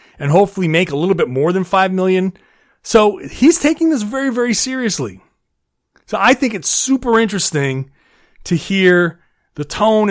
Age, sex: 30-49, male